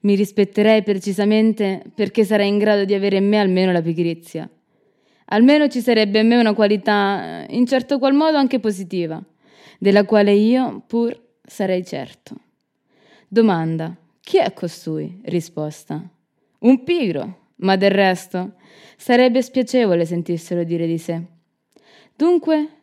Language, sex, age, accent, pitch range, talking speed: Italian, female, 20-39, native, 185-245 Hz, 130 wpm